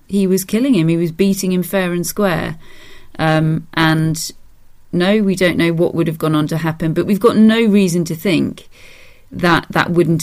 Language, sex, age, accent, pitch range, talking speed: English, female, 30-49, British, 155-185 Hz, 200 wpm